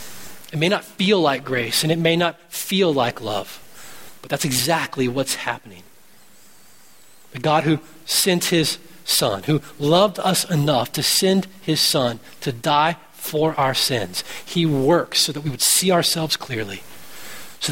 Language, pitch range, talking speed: English, 130-170 Hz, 160 wpm